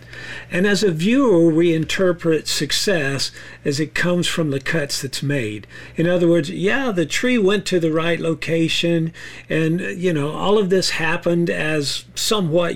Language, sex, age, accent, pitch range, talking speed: English, male, 50-69, American, 140-185 Hz, 165 wpm